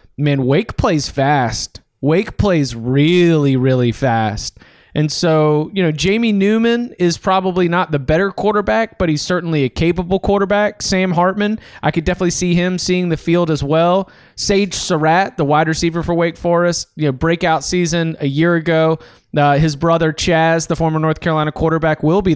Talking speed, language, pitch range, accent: 175 wpm, English, 150-185 Hz, American